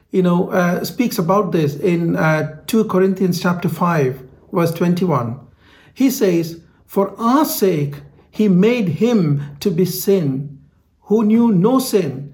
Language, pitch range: English, 155-215 Hz